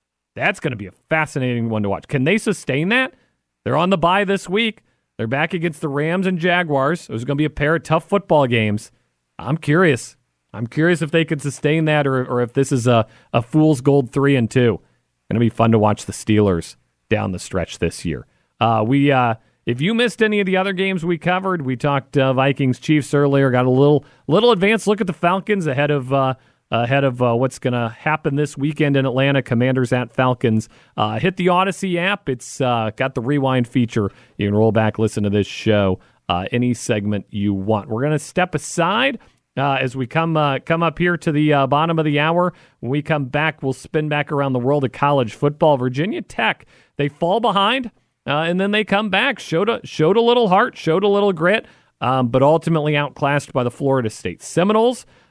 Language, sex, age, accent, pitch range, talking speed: English, male, 40-59, American, 120-165 Hz, 220 wpm